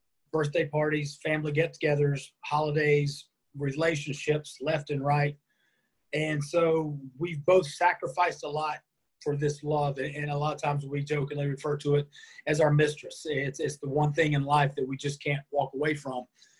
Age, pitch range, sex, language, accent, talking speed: 30-49, 140-155 Hz, male, English, American, 165 wpm